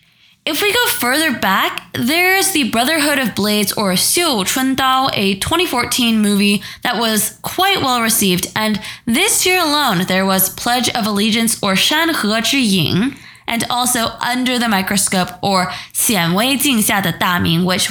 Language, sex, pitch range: English, female, 195-275 Hz